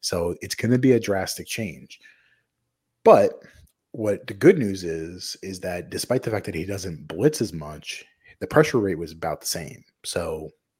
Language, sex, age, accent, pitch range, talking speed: English, male, 30-49, American, 85-110 Hz, 185 wpm